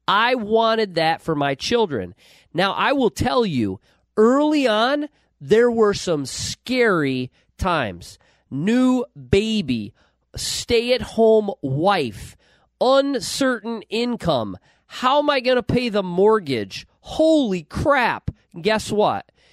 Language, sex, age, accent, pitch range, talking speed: English, male, 40-59, American, 155-220 Hz, 110 wpm